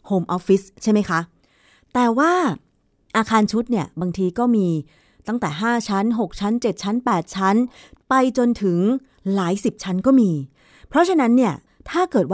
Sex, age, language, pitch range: female, 30-49, Thai, 180-245 Hz